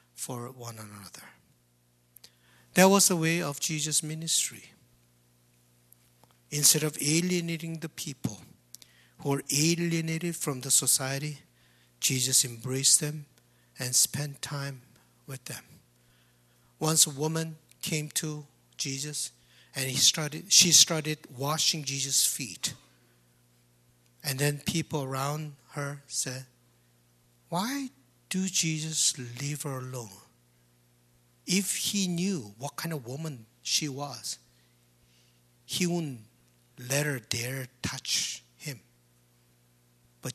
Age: 60-79